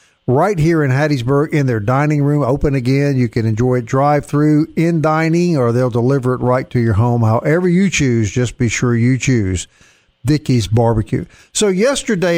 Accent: American